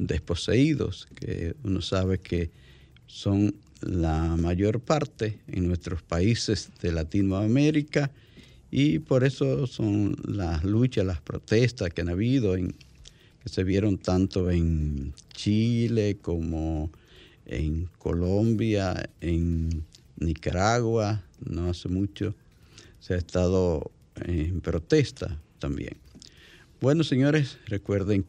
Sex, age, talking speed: male, 50-69, 105 wpm